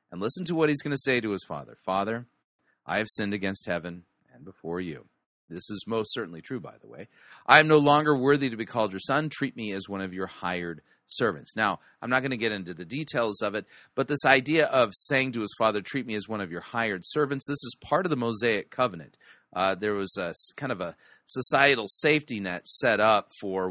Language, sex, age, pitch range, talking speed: English, male, 30-49, 95-135 Hz, 230 wpm